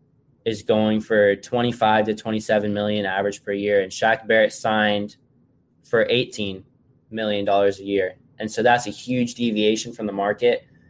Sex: male